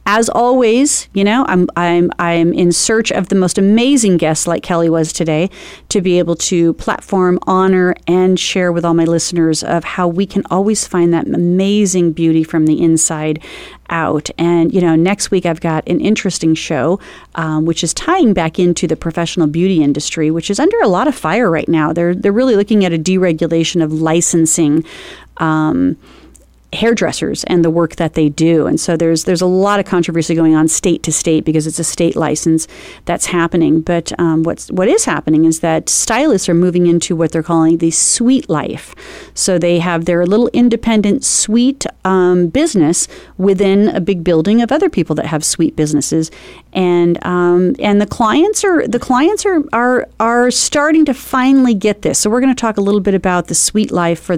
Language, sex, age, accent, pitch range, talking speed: English, female, 30-49, American, 165-205 Hz, 195 wpm